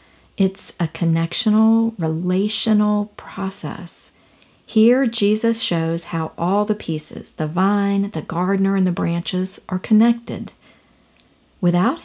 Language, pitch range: English, 165-205 Hz